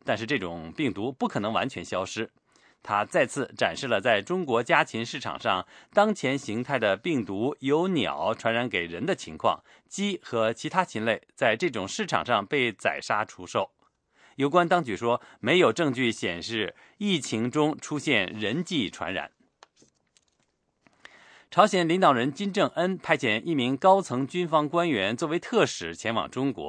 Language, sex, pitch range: English, male, 115-175 Hz